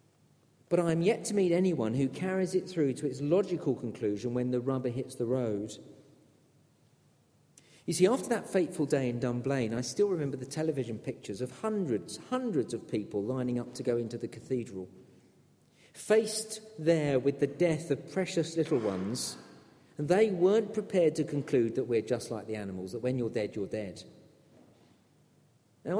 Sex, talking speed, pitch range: male, 175 wpm, 120-165 Hz